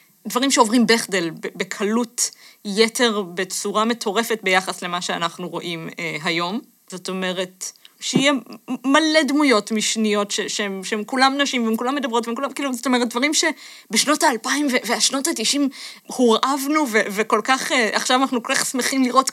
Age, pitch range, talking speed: 20-39, 215-280 Hz, 150 wpm